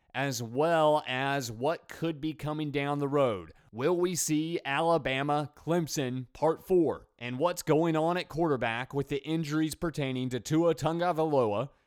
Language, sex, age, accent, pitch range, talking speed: English, male, 30-49, American, 120-155 Hz, 145 wpm